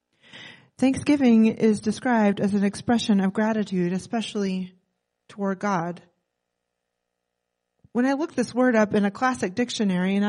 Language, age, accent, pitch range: English, 30-49, American, 185-255 Hz